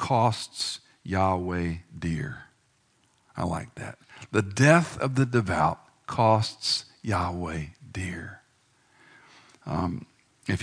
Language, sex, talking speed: English, male, 90 wpm